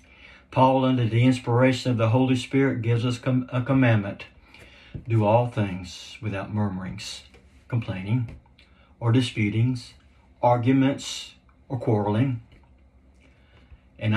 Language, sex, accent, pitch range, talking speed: English, male, American, 85-130 Hz, 105 wpm